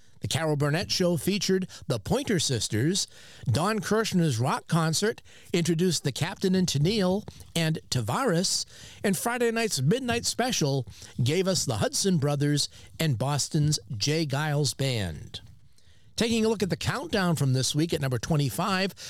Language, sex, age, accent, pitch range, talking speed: English, male, 50-69, American, 130-185 Hz, 145 wpm